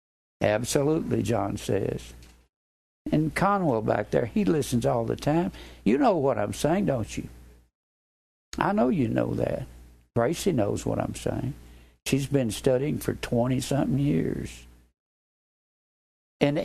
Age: 60-79